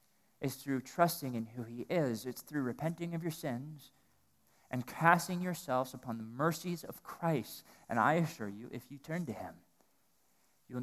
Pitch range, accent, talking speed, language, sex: 125-155 Hz, American, 170 wpm, English, male